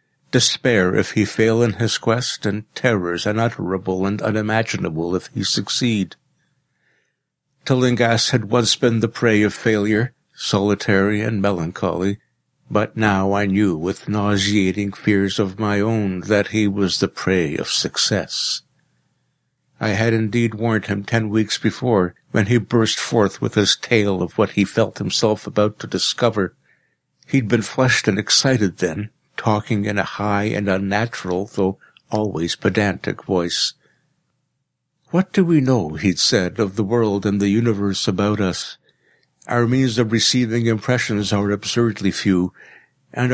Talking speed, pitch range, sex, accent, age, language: 145 wpm, 100-120 Hz, male, American, 60-79, English